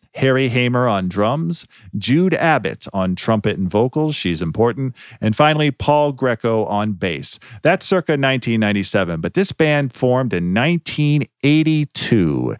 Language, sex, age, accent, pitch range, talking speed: English, male, 40-59, American, 95-140 Hz, 130 wpm